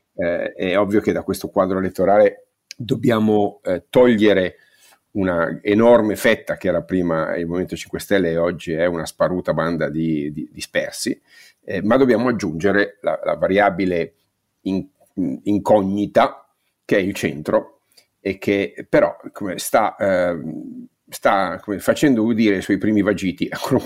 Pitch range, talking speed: 90-115 Hz, 155 wpm